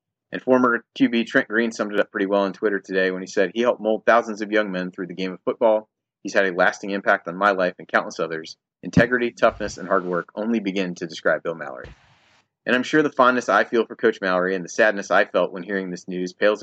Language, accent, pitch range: English, American, 95-120 Hz